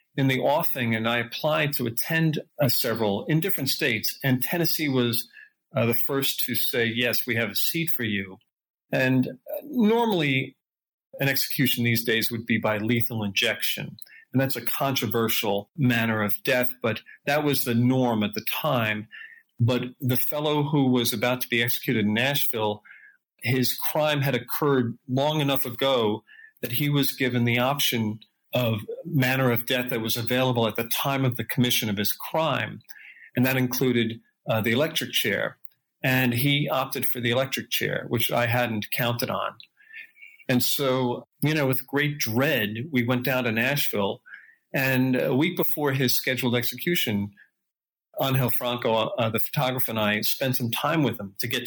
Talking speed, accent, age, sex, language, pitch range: 170 wpm, American, 40-59, male, English, 115-140 Hz